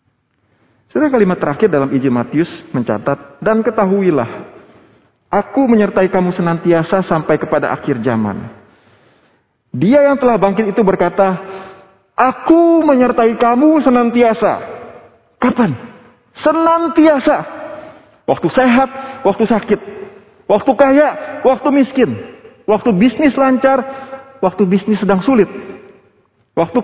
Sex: male